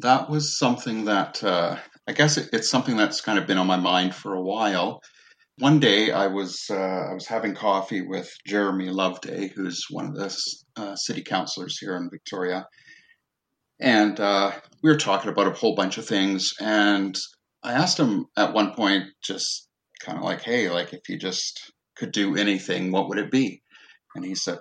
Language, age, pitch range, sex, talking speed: English, 40-59, 95-130 Hz, male, 195 wpm